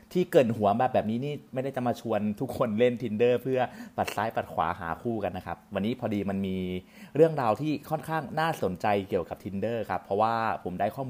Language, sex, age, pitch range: Thai, male, 30-49, 100-130 Hz